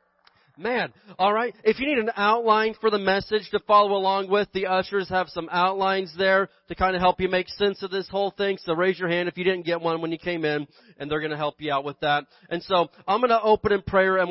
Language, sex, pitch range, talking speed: English, male, 155-190 Hz, 265 wpm